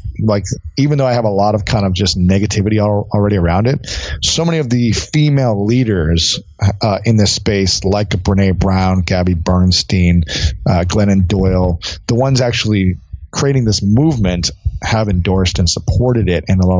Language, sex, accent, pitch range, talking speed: English, male, American, 95-120 Hz, 165 wpm